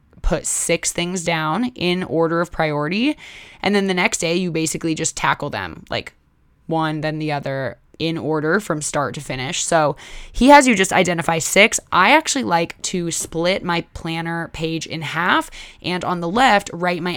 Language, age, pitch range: English, 20-39, 155-185 Hz